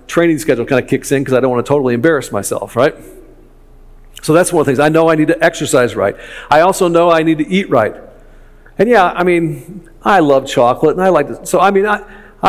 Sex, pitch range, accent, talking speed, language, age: male, 130-165 Hz, American, 245 wpm, English, 50-69